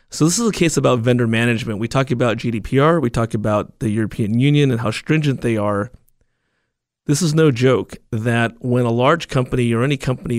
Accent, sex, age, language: American, male, 30-49, English